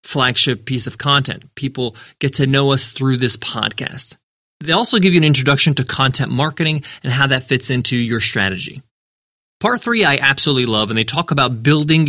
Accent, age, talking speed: American, 20-39, 190 wpm